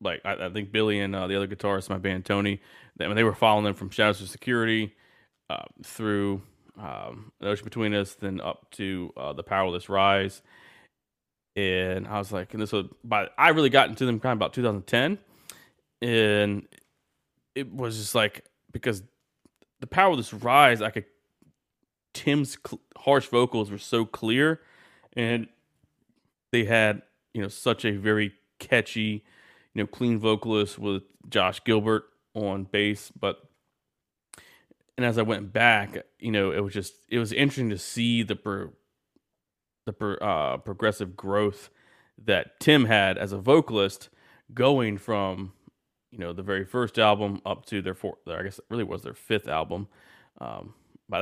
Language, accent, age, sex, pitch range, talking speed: English, American, 20-39, male, 100-115 Hz, 170 wpm